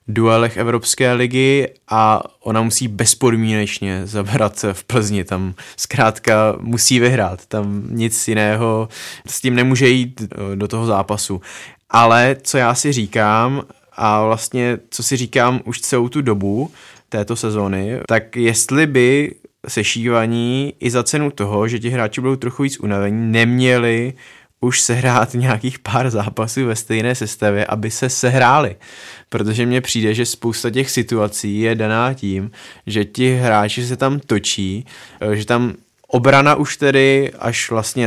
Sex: male